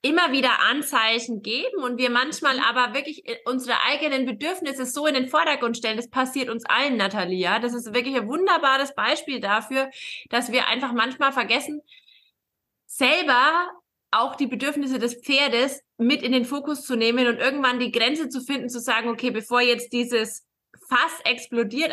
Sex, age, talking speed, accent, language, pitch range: female, 20-39, 165 wpm, German, German, 230-275 Hz